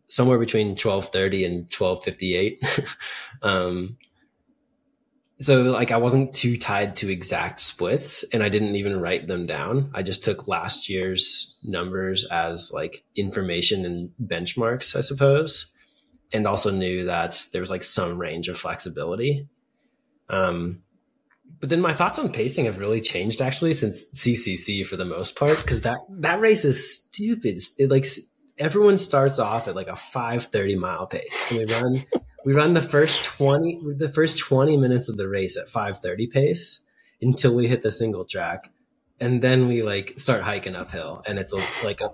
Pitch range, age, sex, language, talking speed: 100-145 Hz, 20-39, male, English, 160 wpm